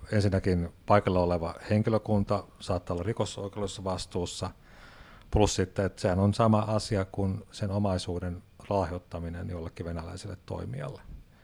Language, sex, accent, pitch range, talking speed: Finnish, male, native, 90-105 Hz, 115 wpm